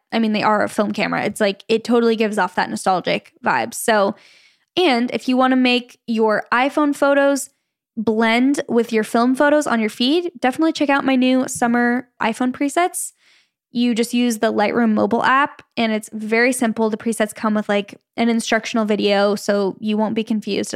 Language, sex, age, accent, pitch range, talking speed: English, female, 10-29, American, 215-255 Hz, 190 wpm